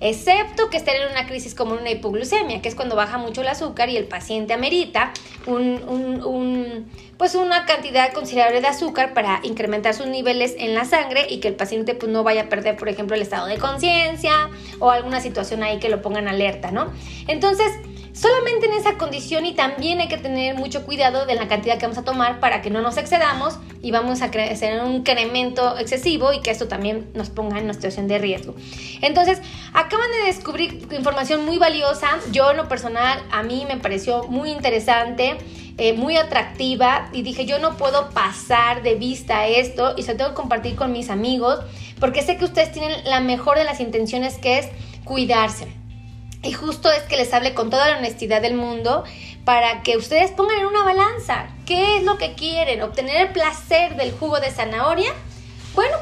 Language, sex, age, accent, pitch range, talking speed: Spanish, female, 20-39, Mexican, 230-310 Hz, 200 wpm